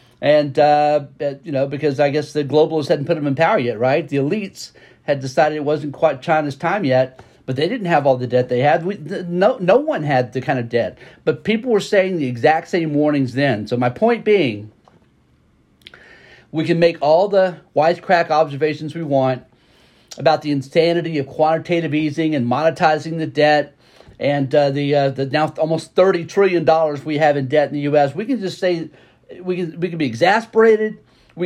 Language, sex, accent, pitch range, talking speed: English, male, American, 140-170 Hz, 195 wpm